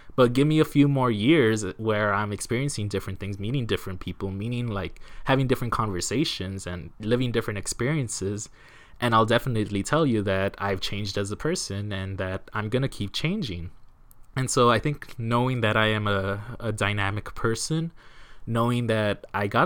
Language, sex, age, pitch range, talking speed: English, male, 20-39, 100-130 Hz, 175 wpm